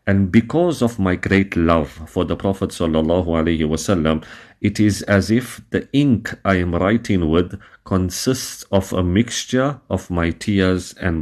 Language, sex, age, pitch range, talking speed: English, male, 50-69, 85-100 Hz, 155 wpm